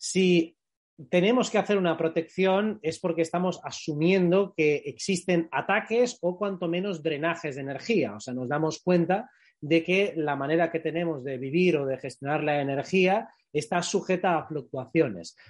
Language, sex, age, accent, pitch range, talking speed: Spanish, male, 30-49, Spanish, 155-195 Hz, 160 wpm